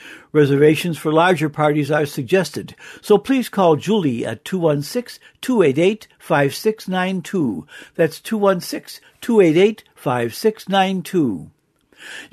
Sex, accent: male, American